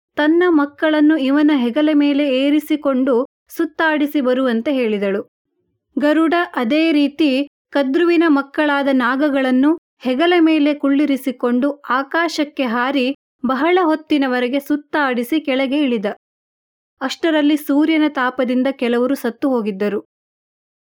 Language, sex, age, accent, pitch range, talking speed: Kannada, female, 30-49, native, 255-310 Hz, 85 wpm